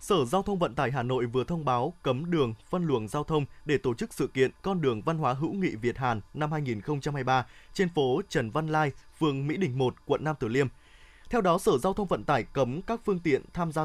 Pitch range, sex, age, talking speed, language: 130-180 Hz, male, 20-39, 245 wpm, Vietnamese